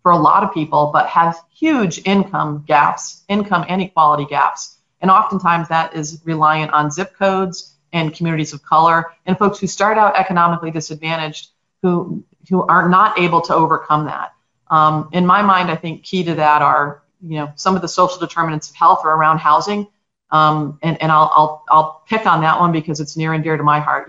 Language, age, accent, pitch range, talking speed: English, 40-59, American, 150-175 Hz, 200 wpm